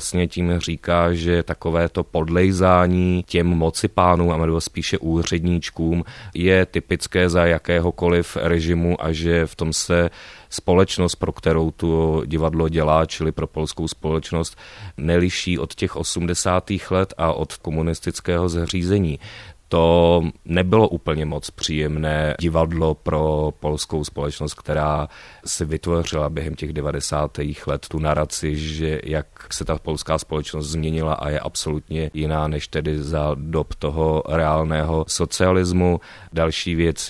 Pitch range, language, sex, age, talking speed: 80-85 Hz, Czech, male, 30-49, 130 wpm